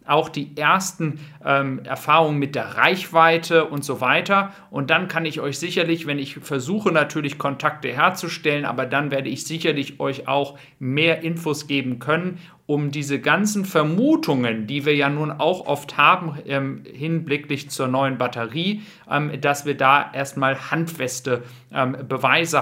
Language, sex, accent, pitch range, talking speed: German, male, German, 135-160 Hz, 155 wpm